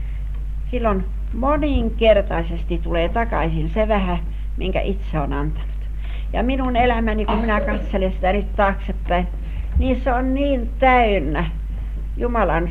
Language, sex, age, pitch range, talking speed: Finnish, female, 60-79, 170-230 Hz, 120 wpm